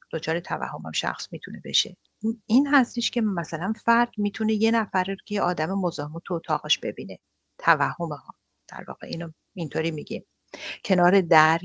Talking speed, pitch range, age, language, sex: 155 wpm, 155-205 Hz, 50-69, English, female